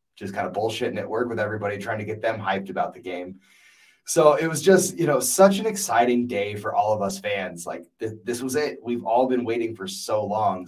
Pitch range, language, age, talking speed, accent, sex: 105-130 Hz, English, 20-39, 235 wpm, American, male